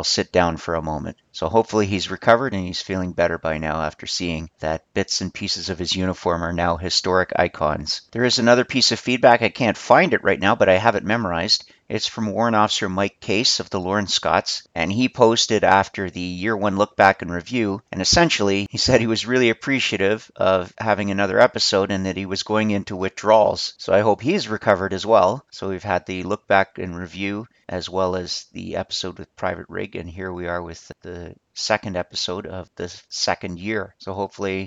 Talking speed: 210 wpm